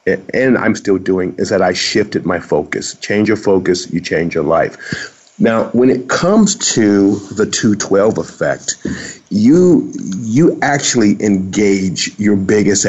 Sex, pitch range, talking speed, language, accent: male, 100-135 Hz, 145 wpm, English, American